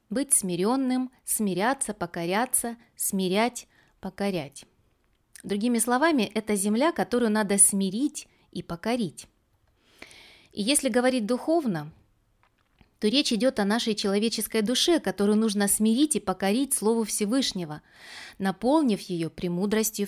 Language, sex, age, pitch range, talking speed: Russian, female, 30-49, 195-255 Hz, 110 wpm